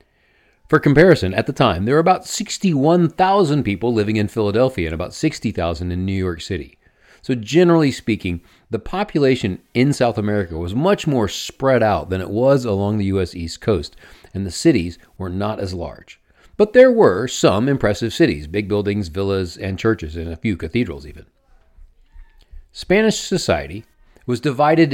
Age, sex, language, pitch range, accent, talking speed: 40-59, male, English, 90-130 Hz, American, 165 wpm